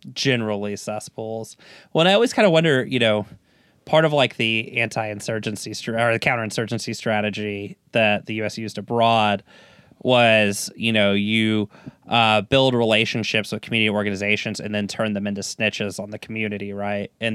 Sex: male